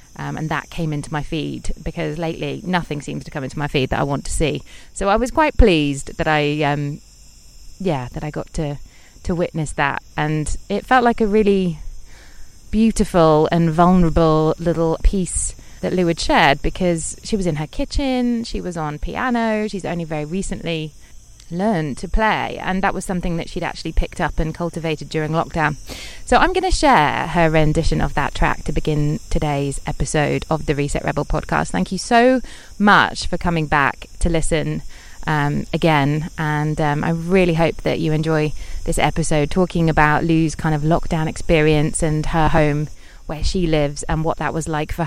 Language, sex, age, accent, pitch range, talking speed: English, female, 30-49, British, 150-180 Hz, 190 wpm